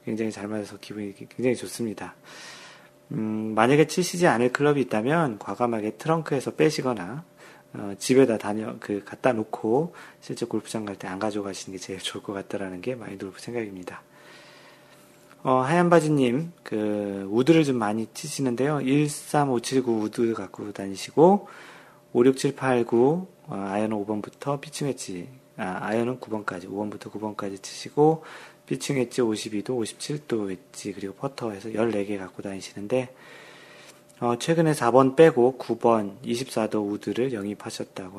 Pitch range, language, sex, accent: 105-130 Hz, Korean, male, native